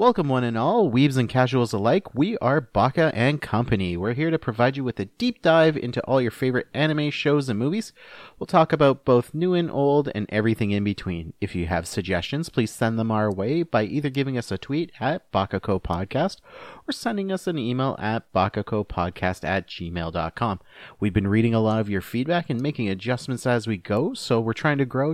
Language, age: English, 30-49